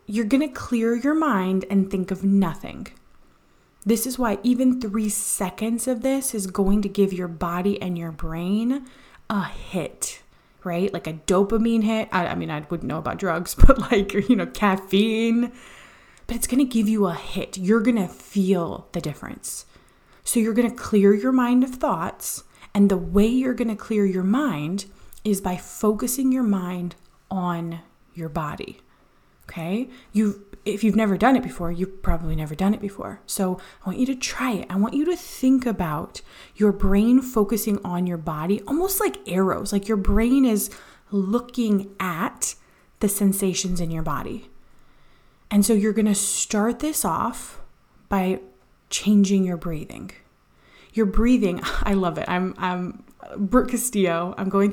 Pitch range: 185-230 Hz